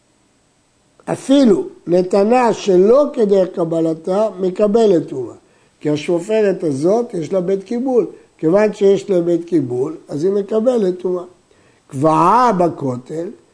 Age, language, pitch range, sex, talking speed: 60-79, Hebrew, 170-220 Hz, male, 110 wpm